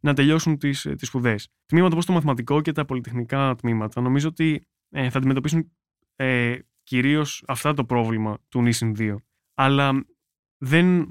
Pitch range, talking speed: 120-150 Hz, 145 wpm